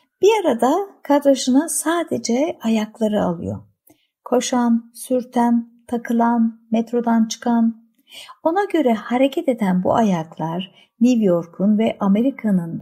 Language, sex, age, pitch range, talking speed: Turkish, female, 60-79, 195-270 Hz, 100 wpm